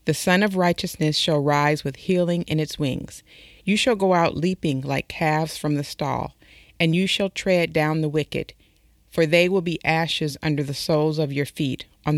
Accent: American